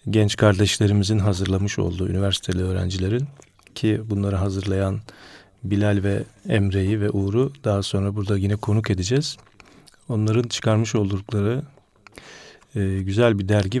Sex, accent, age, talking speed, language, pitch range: male, native, 40-59, 115 wpm, Turkish, 100-120 Hz